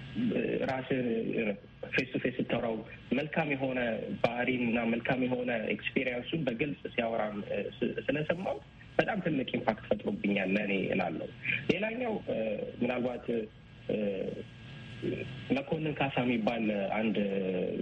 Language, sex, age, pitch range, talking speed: Amharic, male, 30-49, 115-140 Hz, 85 wpm